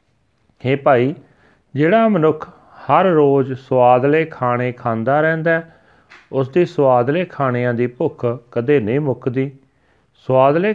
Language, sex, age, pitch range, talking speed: Punjabi, male, 40-59, 120-150 Hz, 115 wpm